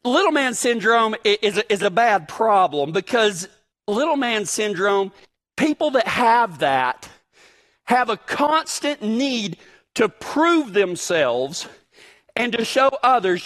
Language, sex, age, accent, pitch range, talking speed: English, male, 40-59, American, 205-290 Hz, 115 wpm